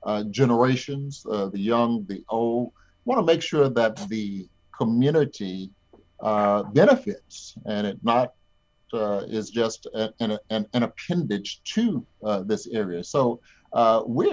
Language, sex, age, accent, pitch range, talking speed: English, male, 50-69, American, 105-140 Hz, 140 wpm